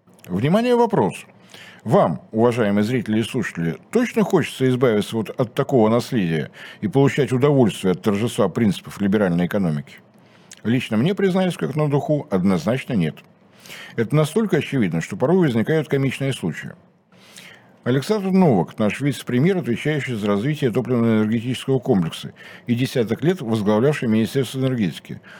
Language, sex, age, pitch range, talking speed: Russian, male, 60-79, 120-170 Hz, 125 wpm